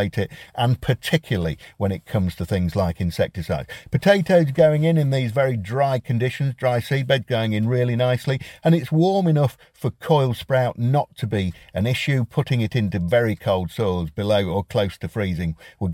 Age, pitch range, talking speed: 50-69, 100-150 Hz, 180 wpm